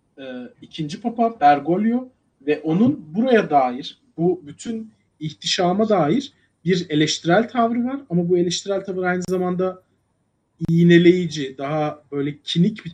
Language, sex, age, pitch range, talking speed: Turkish, male, 40-59, 145-220 Hz, 120 wpm